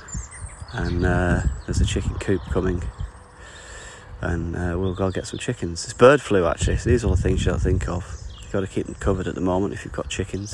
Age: 20-39